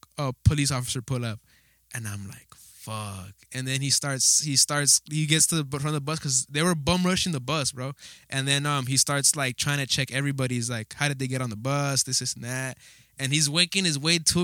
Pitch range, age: 130-150 Hz, 10-29